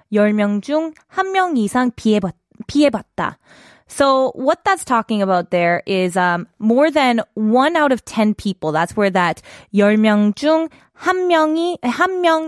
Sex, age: female, 20-39